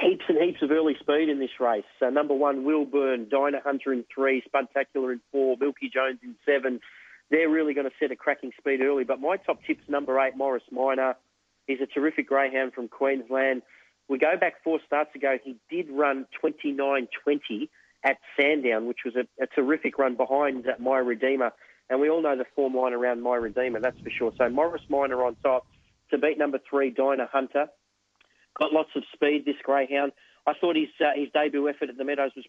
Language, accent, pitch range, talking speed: English, Australian, 125-145 Hz, 205 wpm